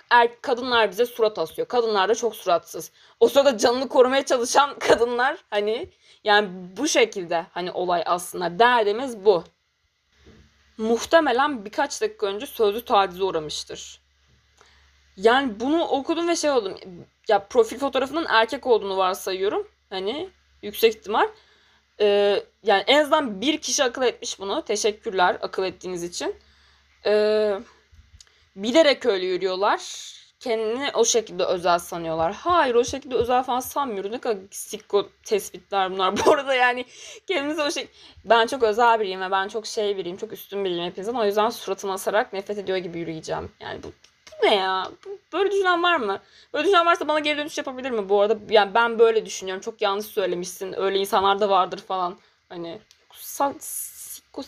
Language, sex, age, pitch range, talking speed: Turkish, female, 20-39, 190-265 Hz, 155 wpm